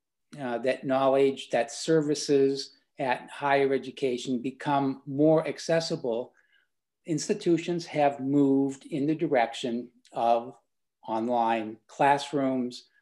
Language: English